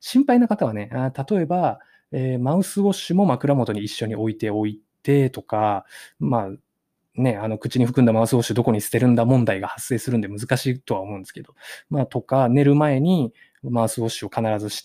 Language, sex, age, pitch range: Japanese, male, 20-39, 115-165 Hz